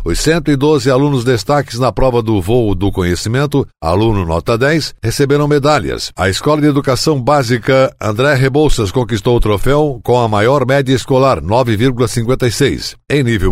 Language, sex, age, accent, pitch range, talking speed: Portuguese, male, 60-79, Brazilian, 110-145 Hz, 145 wpm